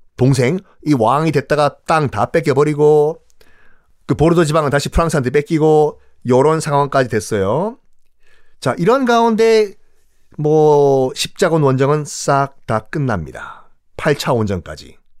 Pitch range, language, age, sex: 120-170 Hz, Korean, 40-59, male